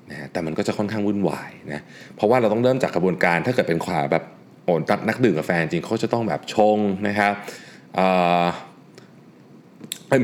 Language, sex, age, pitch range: Thai, male, 20-39, 85-125 Hz